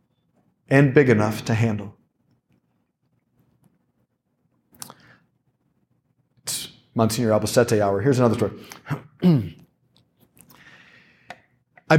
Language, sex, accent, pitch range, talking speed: English, male, American, 115-155 Hz, 65 wpm